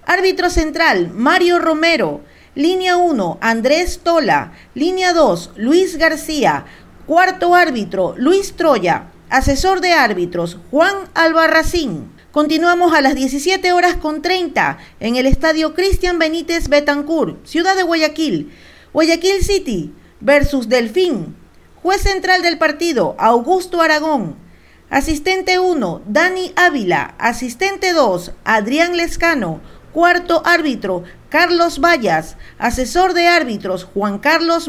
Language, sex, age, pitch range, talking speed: Spanish, female, 40-59, 280-355 Hz, 110 wpm